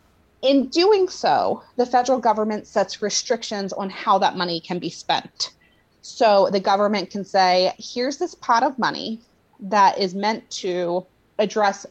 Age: 30-49